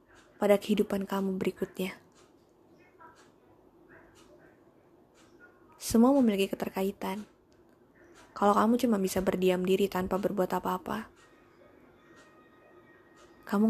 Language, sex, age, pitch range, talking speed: Indonesian, female, 20-39, 195-240 Hz, 75 wpm